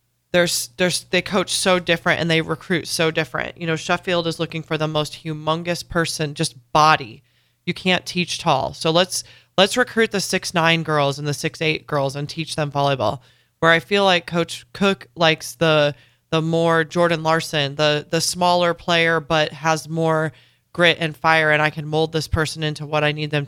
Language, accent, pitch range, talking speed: English, American, 150-170 Hz, 195 wpm